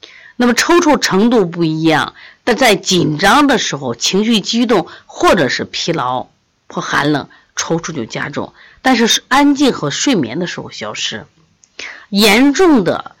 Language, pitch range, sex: Chinese, 150-230 Hz, female